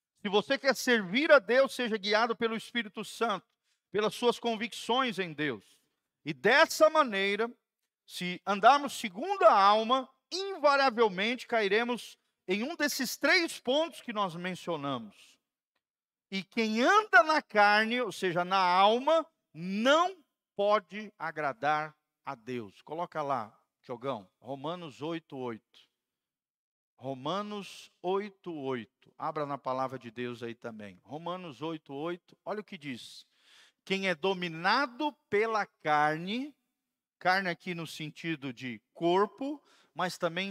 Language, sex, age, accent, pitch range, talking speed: Portuguese, male, 50-69, Brazilian, 160-235 Hz, 125 wpm